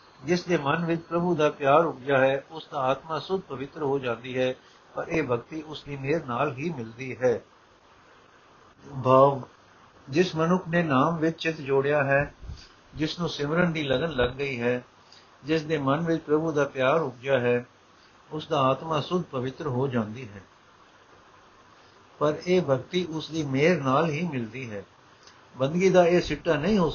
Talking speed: 170 wpm